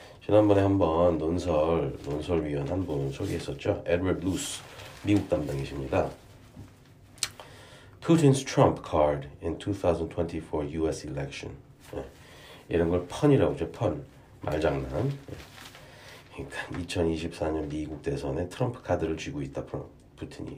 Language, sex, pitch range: Korean, male, 80-110 Hz